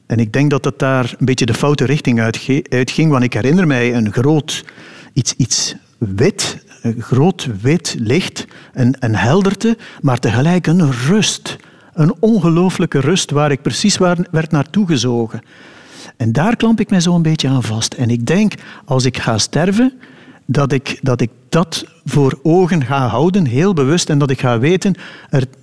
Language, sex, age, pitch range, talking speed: Dutch, male, 60-79, 125-170 Hz, 180 wpm